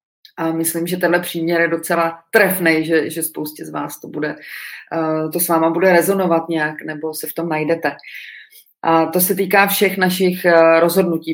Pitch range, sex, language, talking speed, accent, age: 160-185 Hz, female, Czech, 175 wpm, native, 30-49